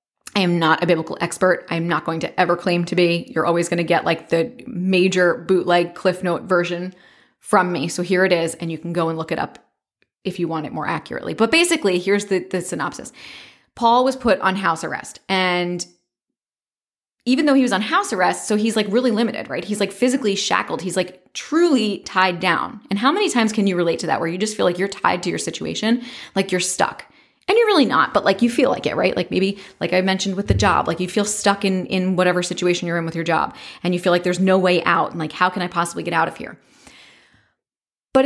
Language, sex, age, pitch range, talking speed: English, female, 20-39, 175-215 Hz, 240 wpm